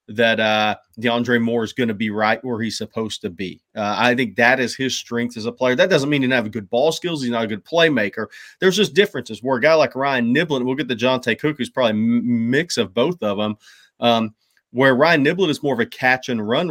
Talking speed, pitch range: 250 wpm, 115-130 Hz